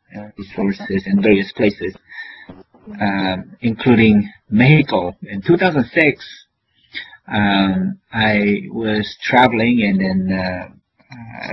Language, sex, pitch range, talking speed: English, male, 95-115 Hz, 85 wpm